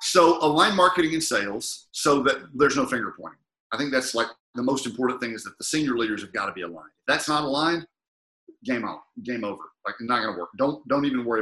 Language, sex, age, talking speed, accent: English, male, 50-69, 245 wpm, American